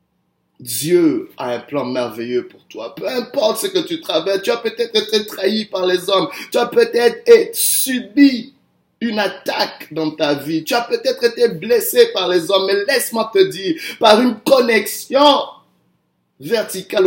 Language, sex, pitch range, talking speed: French, male, 195-255 Hz, 165 wpm